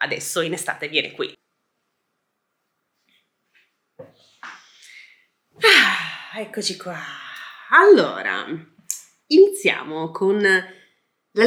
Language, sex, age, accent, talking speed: Italian, female, 30-49, native, 60 wpm